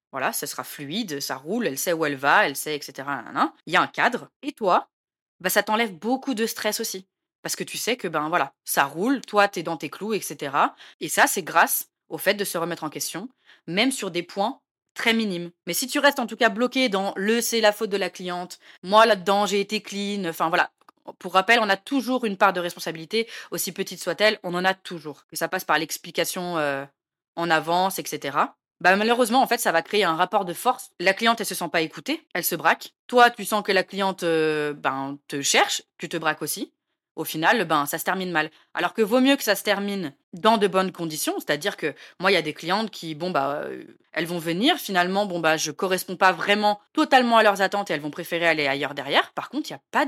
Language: French